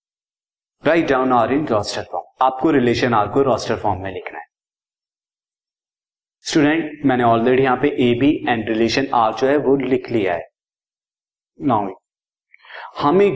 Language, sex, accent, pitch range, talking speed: Hindi, male, native, 130-175 Hz, 90 wpm